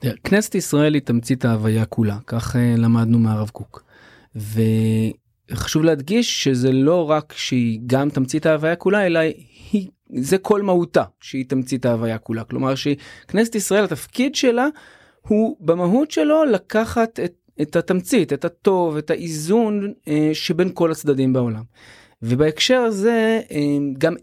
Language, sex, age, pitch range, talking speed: Hebrew, male, 30-49, 130-185 Hz, 130 wpm